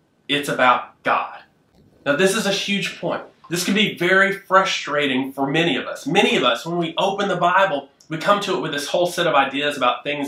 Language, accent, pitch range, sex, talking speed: English, American, 145-190 Hz, male, 220 wpm